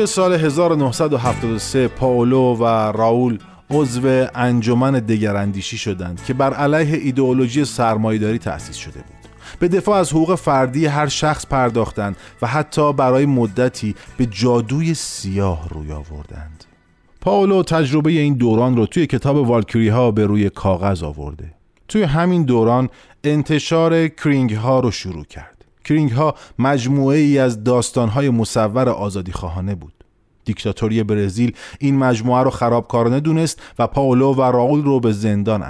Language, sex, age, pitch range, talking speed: Persian, male, 30-49, 105-145 Hz, 135 wpm